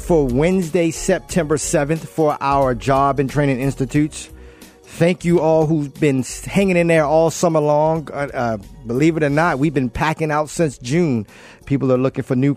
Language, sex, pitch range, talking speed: English, male, 125-150 Hz, 180 wpm